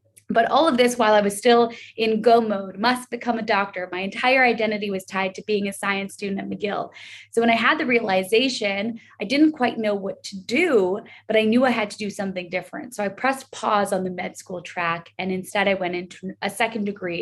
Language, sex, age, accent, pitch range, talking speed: English, female, 20-39, American, 190-230 Hz, 230 wpm